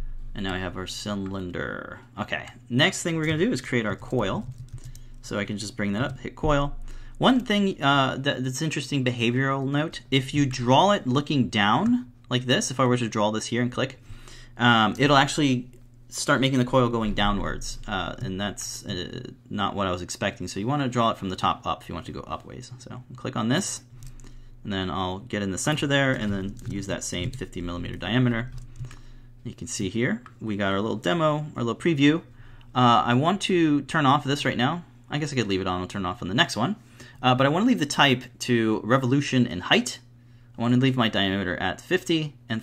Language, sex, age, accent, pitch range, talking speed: English, male, 30-49, American, 110-135 Hz, 220 wpm